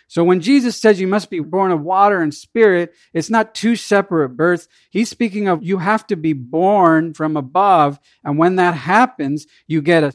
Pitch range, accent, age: 150-215 Hz, American, 50-69